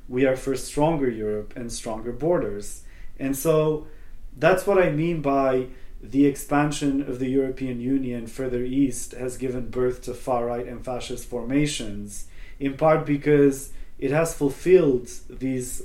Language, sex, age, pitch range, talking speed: English, male, 30-49, 105-140 Hz, 145 wpm